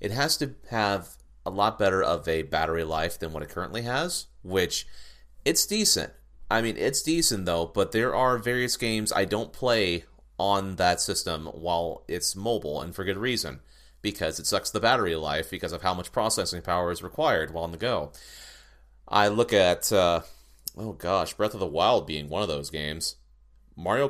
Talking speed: 190 wpm